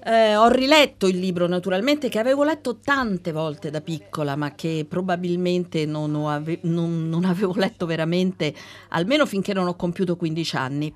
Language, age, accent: Italian, 50-69, native